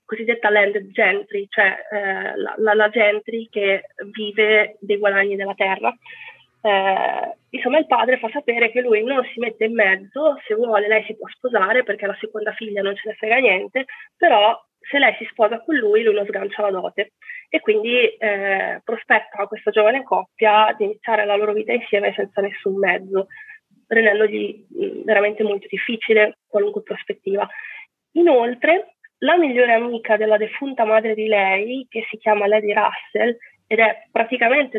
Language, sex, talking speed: Italian, female, 165 wpm